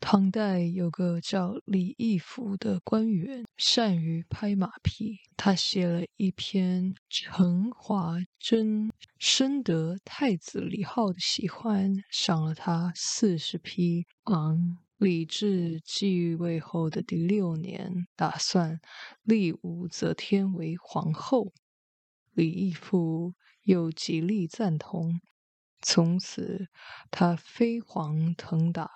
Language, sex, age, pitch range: English, female, 20-39, 170-210 Hz